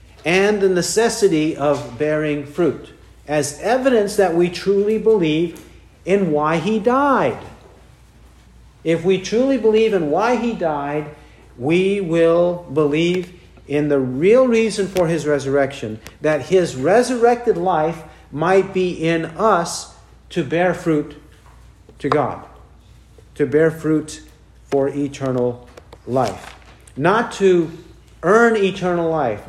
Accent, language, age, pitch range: American, English, 50-69, 150-195 Hz